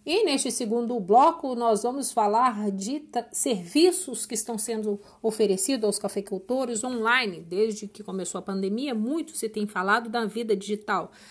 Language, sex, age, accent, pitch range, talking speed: Portuguese, female, 50-69, Brazilian, 210-270 Hz, 155 wpm